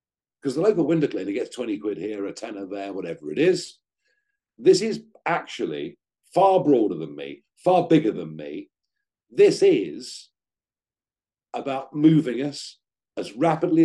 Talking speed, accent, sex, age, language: 145 wpm, British, male, 50-69, English